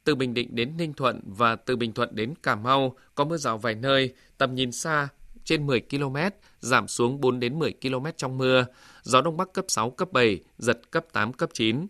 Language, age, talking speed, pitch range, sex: Vietnamese, 20-39, 220 wpm, 120-160 Hz, male